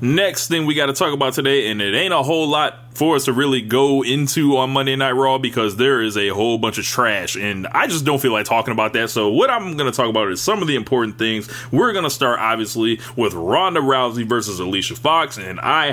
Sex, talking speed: male, 250 wpm